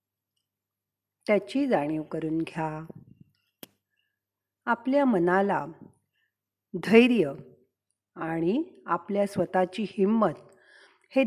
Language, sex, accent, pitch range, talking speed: Marathi, female, native, 170-245 Hz, 65 wpm